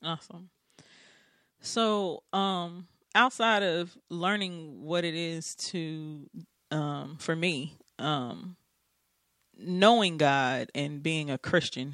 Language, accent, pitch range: English, American, 145-175 Hz